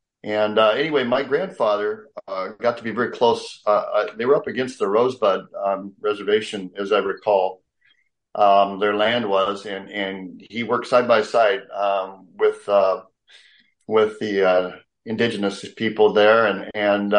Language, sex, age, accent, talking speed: English, male, 40-59, American, 160 wpm